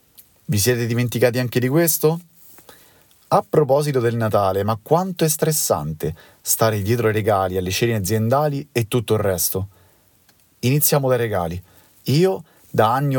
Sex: male